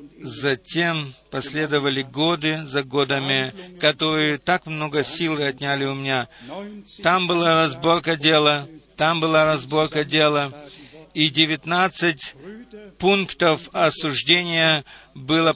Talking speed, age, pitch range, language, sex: 95 wpm, 50-69, 145-175 Hz, Russian, male